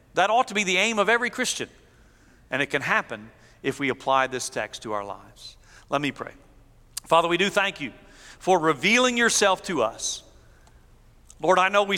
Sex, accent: male, American